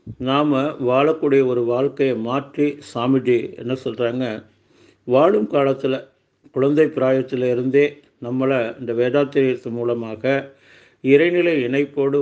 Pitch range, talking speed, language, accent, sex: 125-150 Hz, 95 wpm, Tamil, native, male